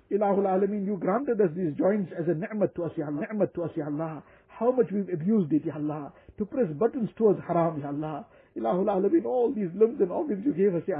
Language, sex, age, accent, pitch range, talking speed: English, male, 60-79, Indian, 175-275 Hz, 200 wpm